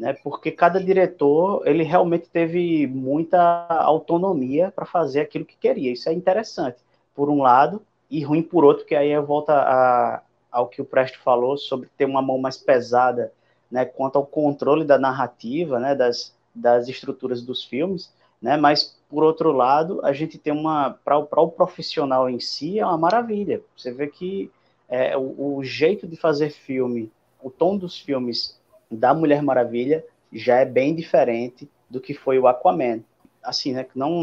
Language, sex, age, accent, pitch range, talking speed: Portuguese, male, 20-39, Brazilian, 125-160 Hz, 170 wpm